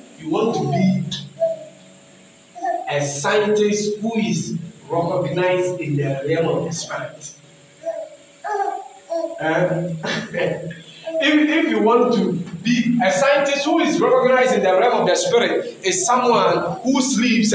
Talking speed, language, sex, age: 125 wpm, English, male, 40-59